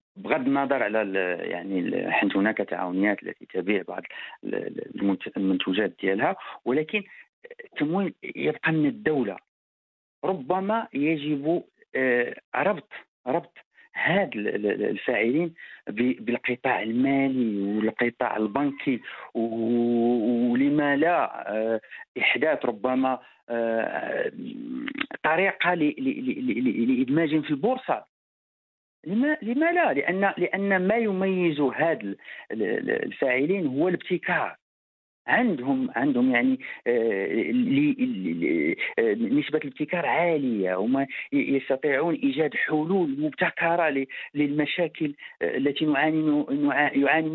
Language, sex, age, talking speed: English, male, 50-69, 75 wpm